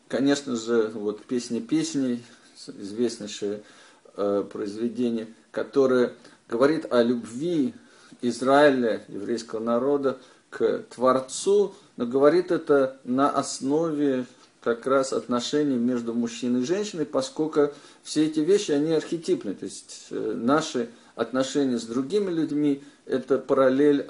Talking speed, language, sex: 110 wpm, Russian, male